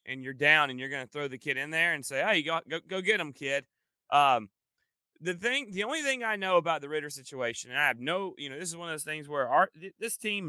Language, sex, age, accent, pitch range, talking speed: English, male, 30-49, American, 135-185 Hz, 280 wpm